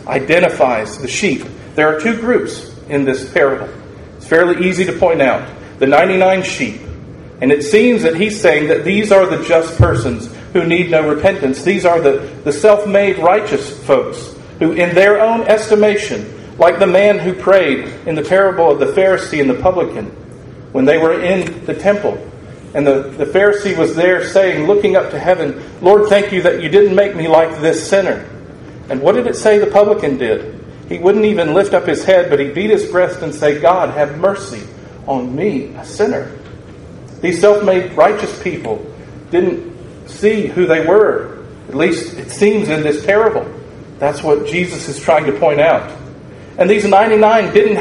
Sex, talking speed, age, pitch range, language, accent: male, 185 wpm, 40-59, 150-205 Hz, English, American